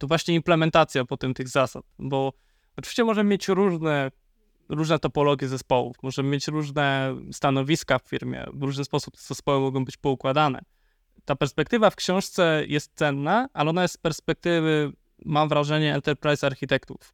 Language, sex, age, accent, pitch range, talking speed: Polish, male, 20-39, native, 135-165 Hz, 150 wpm